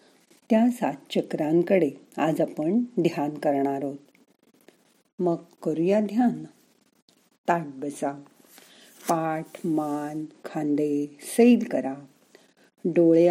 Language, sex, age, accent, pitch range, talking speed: Marathi, female, 50-69, native, 155-230 Hz, 85 wpm